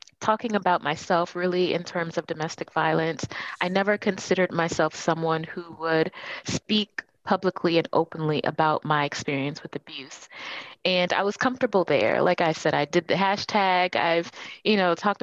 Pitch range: 160-190 Hz